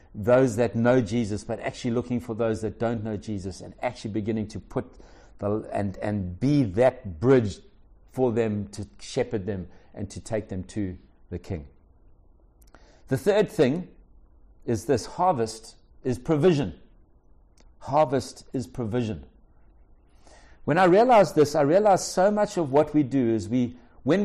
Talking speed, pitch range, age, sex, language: 155 wpm, 105-150 Hz, 60-79, male, English